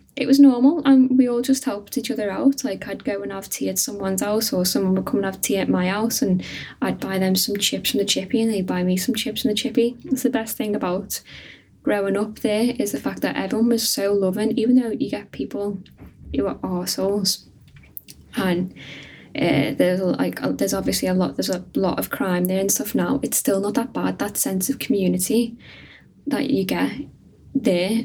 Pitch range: 185-245 Hz